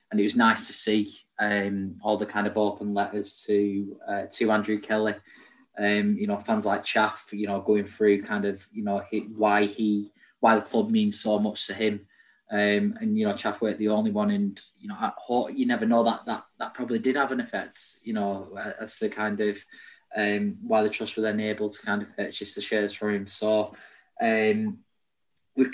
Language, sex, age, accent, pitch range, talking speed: English, male, 20-39, British, 105-120 Hz, 210 wpm